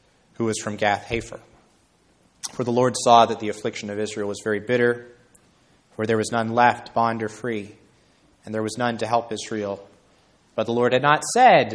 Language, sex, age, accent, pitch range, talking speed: English, male, 30-49, American, 110-140 Hz, 195 wpm